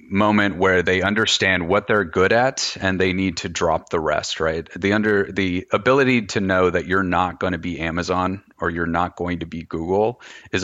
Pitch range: 85-95 Hz